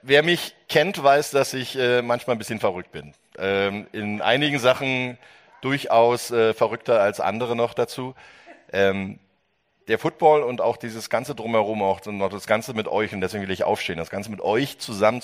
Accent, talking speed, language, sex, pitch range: German, 190 wpm, German, male, 95-125 Hz